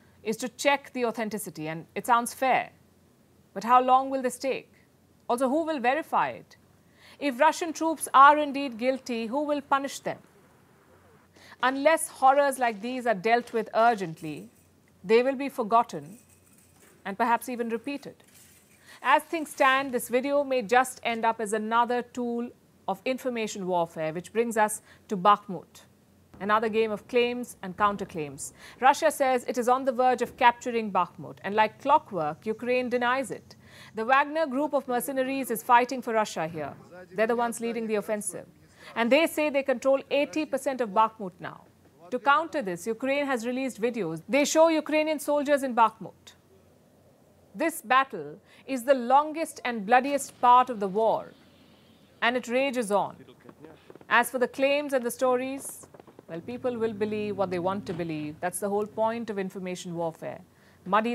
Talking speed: 160 wpm